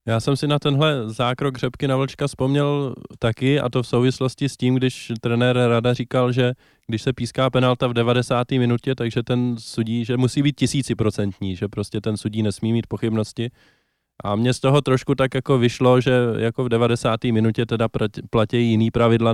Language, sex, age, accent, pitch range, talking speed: Czech, male, 20-39, native, 110-125 Hz, 185 wpm